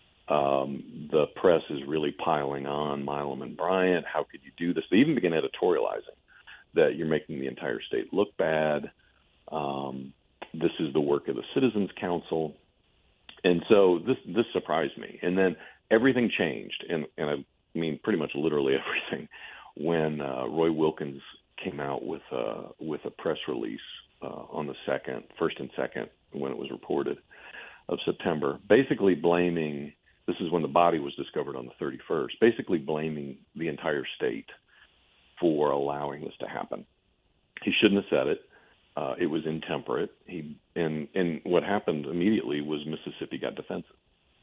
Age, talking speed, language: 50-69, 165 wpm, English